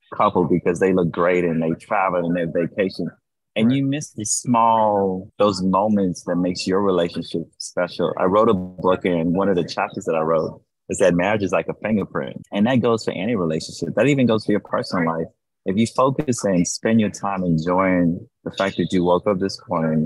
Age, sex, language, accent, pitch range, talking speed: 20-39, male, English, American, 85-105 Hz, 210 wpm